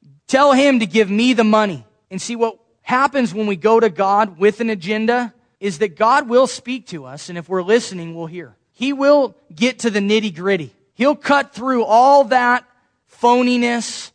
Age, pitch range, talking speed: 20-39, 175-240 Hz, 185 wpm